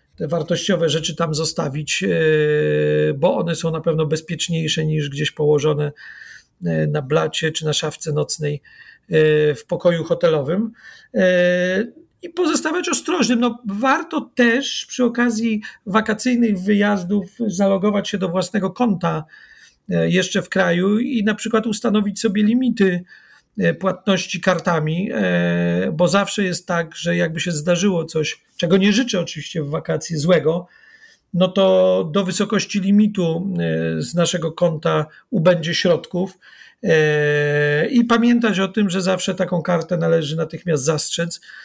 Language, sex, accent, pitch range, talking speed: Polish, male, native, 160-205 Hz, 120 wpm